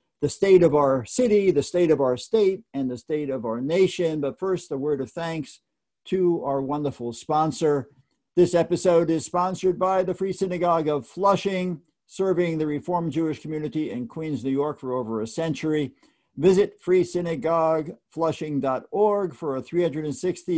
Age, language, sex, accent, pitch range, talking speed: 50-69, English, male, American, 145-180 Hz, 155 wpm